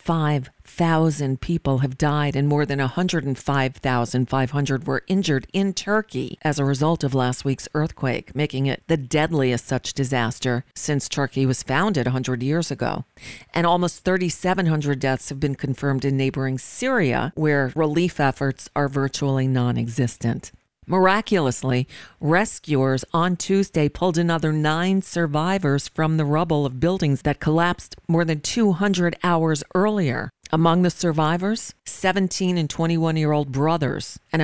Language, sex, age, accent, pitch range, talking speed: English, female, 50-69, American, 135-170 Hz, 130 wpm